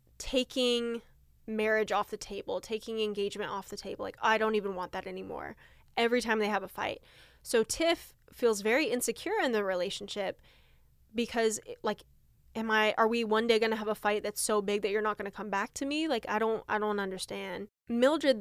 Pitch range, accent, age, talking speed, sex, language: 205-250 Hz, American, 10-29, 205 wpm, female, English